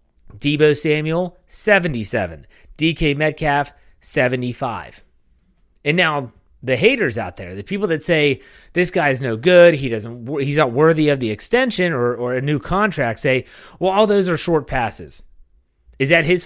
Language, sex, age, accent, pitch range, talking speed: English, male, 30-49, American, 130-185 Hz, 160 wpm